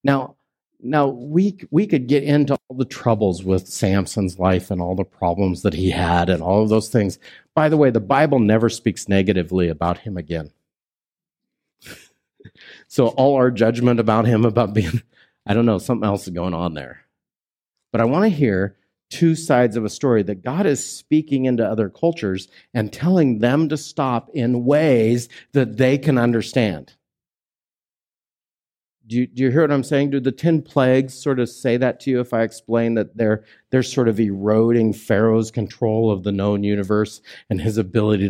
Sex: male